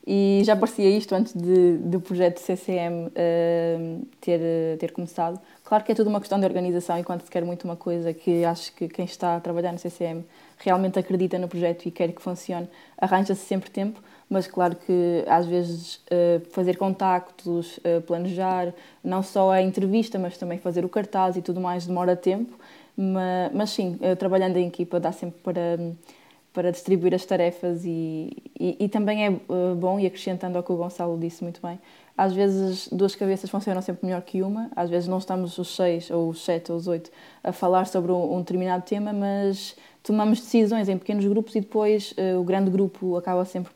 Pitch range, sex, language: 175-190 Hz, female, Portuguese